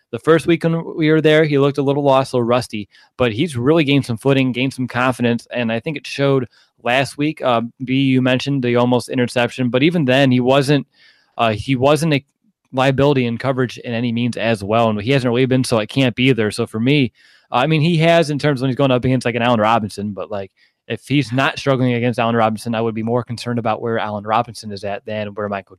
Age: 20-39